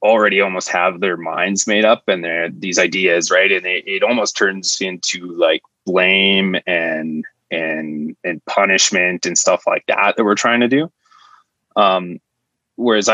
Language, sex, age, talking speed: English, male, 20-39, 160 wpm